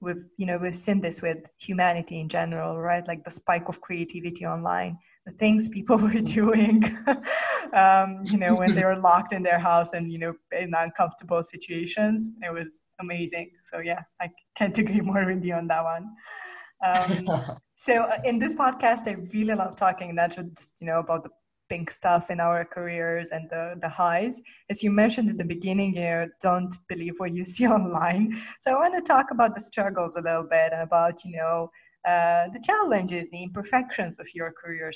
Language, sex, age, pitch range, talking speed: English, female, 20-39, 170-220 Hz, 190 wpm